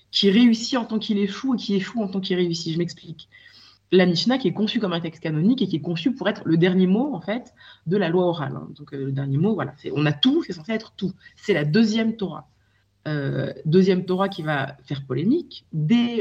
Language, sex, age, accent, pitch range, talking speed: French, female, 20-39, French, 160-225 Hz, 245 wpm